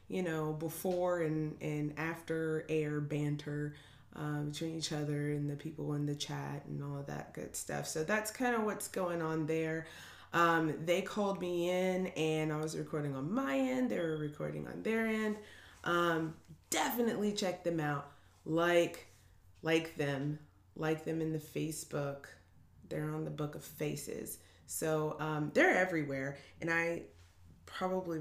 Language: English